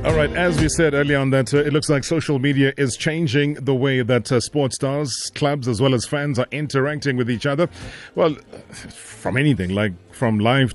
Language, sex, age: English, male, 30-49